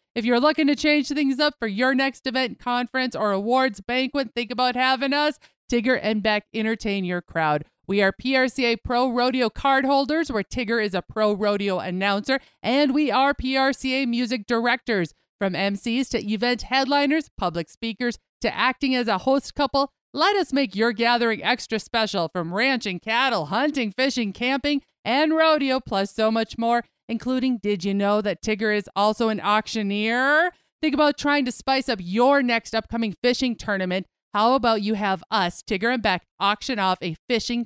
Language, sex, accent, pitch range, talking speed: English, female, American, 205-260 Hz, 175 wpm